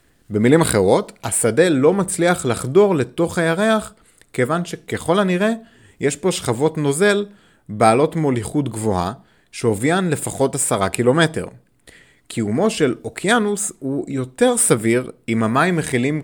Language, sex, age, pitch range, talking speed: Hebrew, male, 30-49, 110-170 Hz, 115 wpm